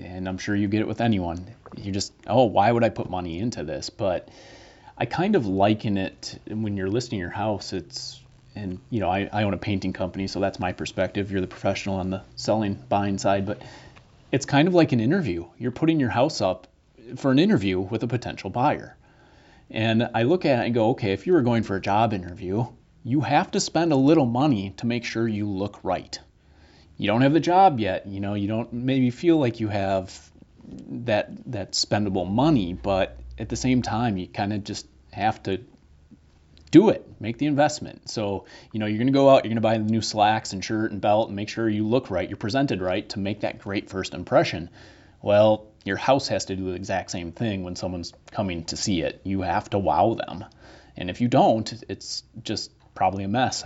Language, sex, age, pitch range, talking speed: English, male, 30-49, 95-120 Hz, 225 wpm